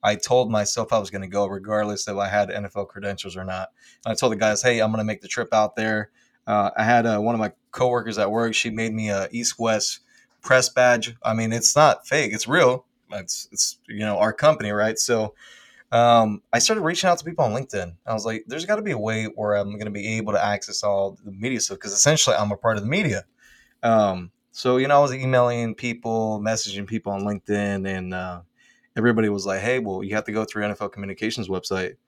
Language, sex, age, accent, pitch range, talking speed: English, male, 20-39, American, 105-125 Hz, 235 wpm